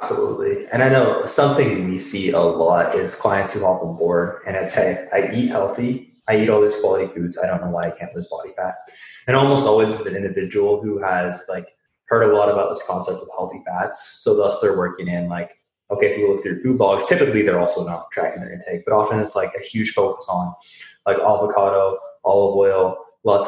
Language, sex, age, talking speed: English, male, 20-39, 220 wpm